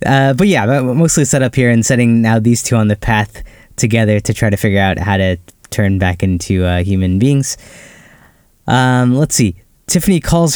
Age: 10-29